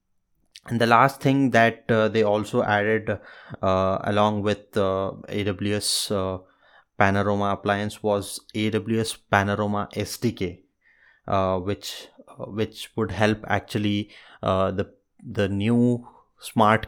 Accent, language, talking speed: Indian, English, 115 wpm